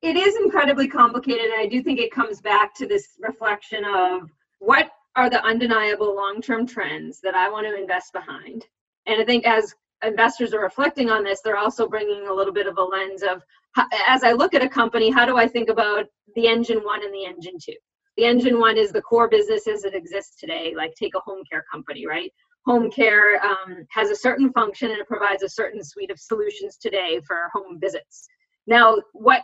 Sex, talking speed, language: female, 210 wpm, English